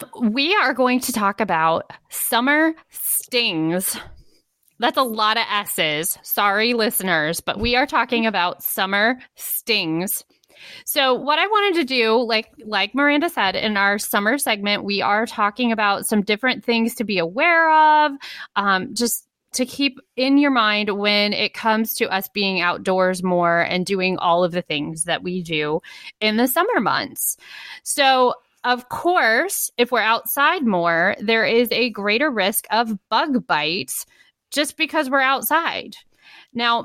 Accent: American